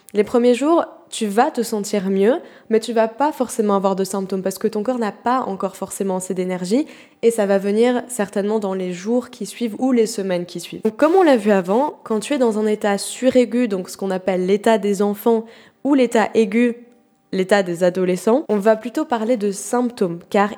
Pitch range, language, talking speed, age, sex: 195-240 Hz, French, 215 wpm, 20-39, female